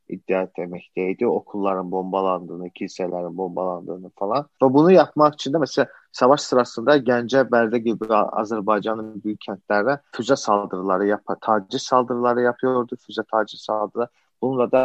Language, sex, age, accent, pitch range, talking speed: Turkish, male, 40-59, native, 110-135 Hz, 125 wpm